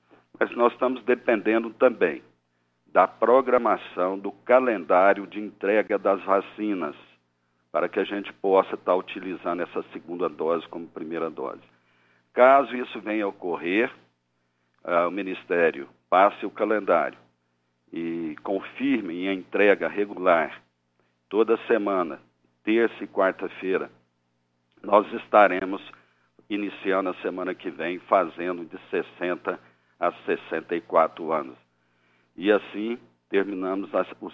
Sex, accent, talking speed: male, Brazilian, 110 wpm